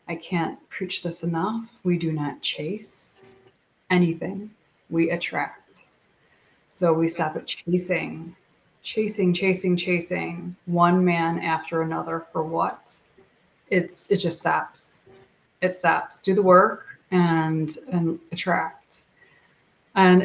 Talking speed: 115 wpm